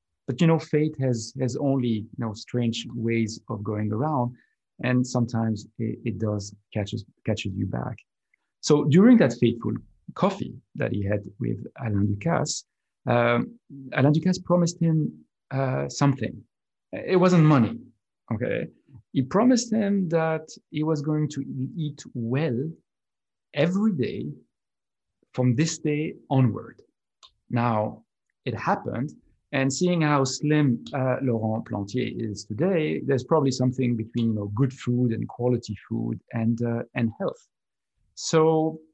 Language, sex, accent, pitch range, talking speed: English, male, French, 115-150 Hz, 135 wpm